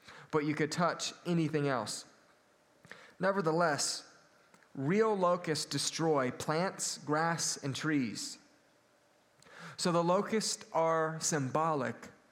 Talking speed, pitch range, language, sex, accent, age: 95 wpm, 135-170 Hz, English, male, American, 30-49